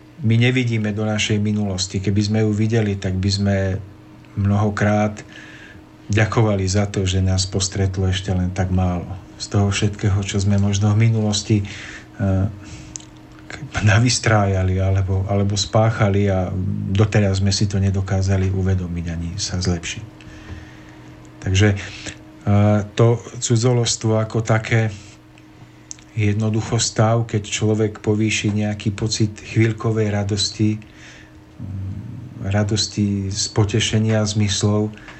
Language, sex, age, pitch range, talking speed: Slovak, male, 40-59, 95-110 Hz, 110 wpm